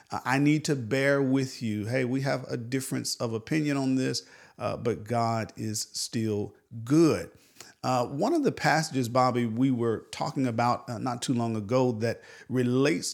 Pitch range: 115-140 Hz